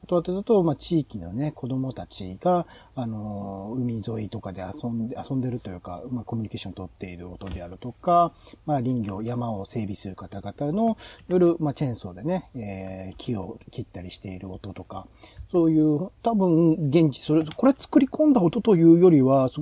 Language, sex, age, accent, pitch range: Japanese, male, 40-59, native, 115-180 Hz